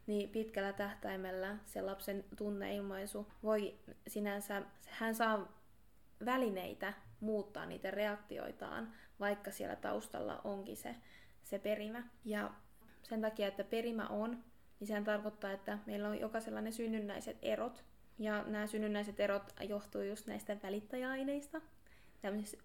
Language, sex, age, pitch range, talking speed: Finnish, female, 20-39, 200-225 Hz, 120 wpm